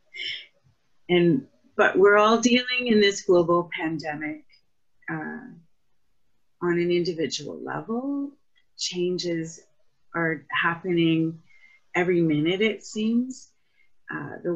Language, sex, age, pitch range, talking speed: English, female, 30-49, 160-225 Hz, 95 wpm